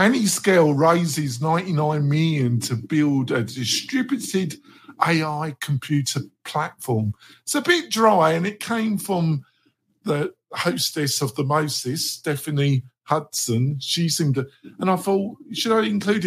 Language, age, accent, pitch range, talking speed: English, 50-69, British, 125-175 Hz, 135 wpm